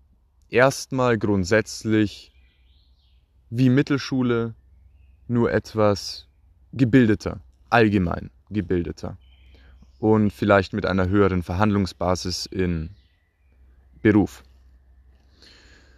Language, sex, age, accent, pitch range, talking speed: German, male, 20-39, German, 70-105 Hz, 65 wpm